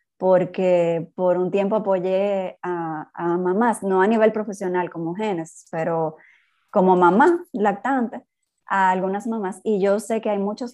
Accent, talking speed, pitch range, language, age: American, 150 wpm, 180-215 Hz, Spanish, 20-39